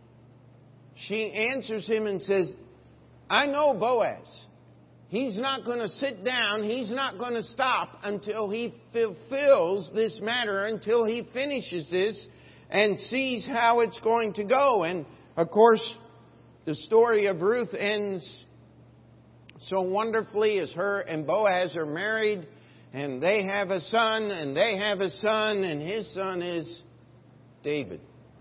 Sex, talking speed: male, 140 wpm